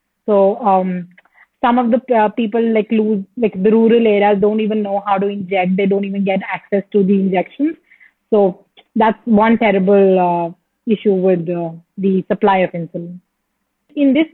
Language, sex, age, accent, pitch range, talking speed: English, female, 30-49, Indian, 200-235 Hz, 170 wpm